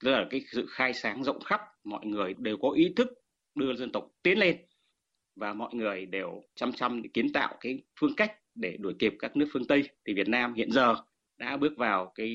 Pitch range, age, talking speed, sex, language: 120-180 Hz, 30-49, 230 wpm, male, Vietnamese